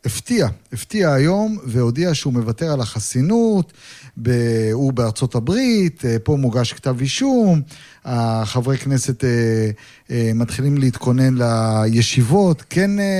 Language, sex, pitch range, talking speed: Hebrew, male, 115-150 Hz, 95 wpm